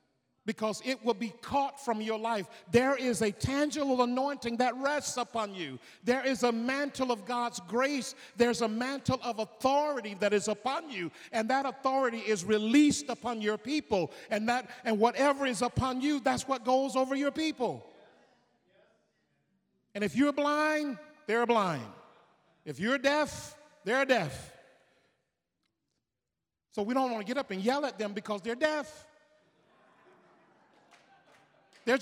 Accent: American